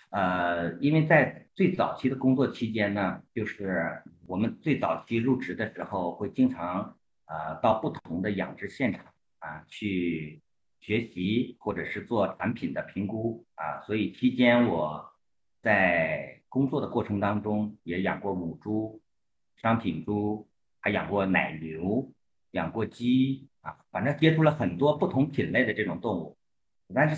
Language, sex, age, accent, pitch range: Chinese, male, 50-69, native, 100-135 Hz